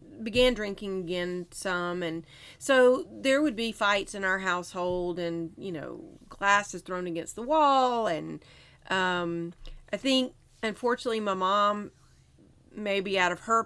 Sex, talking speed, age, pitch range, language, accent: female, 140 wpm, 30-49, 170-225 Hz, English, American